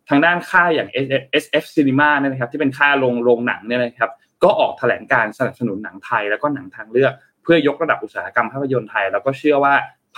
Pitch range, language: 120-150 Hz, Thai